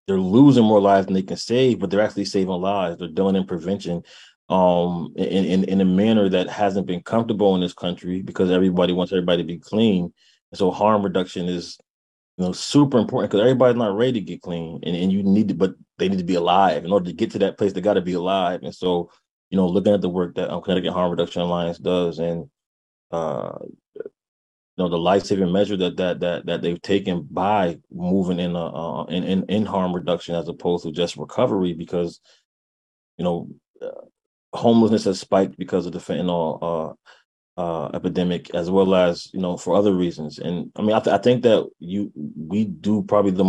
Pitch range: 85-100 Hz